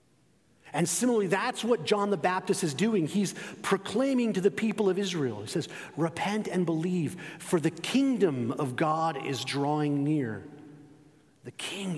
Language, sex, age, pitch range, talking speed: English, male, 40-59, 135-185 Hz, 155 wpm